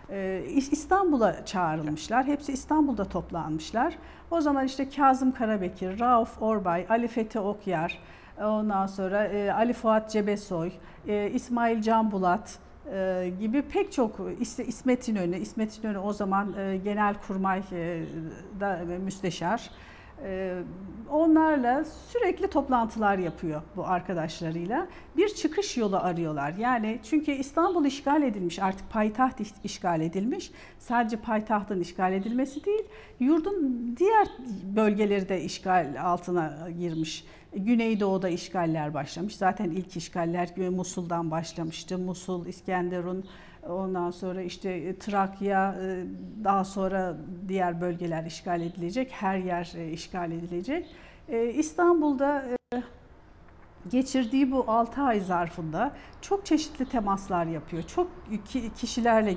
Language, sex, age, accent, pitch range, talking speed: Turkish, female, 50-69, native, 180-255 Hz, 105 wpm